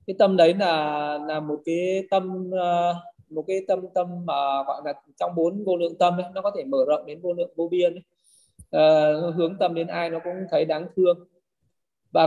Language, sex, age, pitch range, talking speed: Vietnamese, male, 20-39, 160-190 Hz, 210 wpm